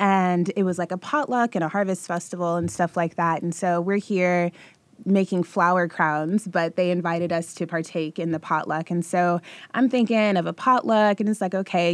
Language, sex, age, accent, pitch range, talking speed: English, female, 20-39, American, 165-190 Hz, 205 wpm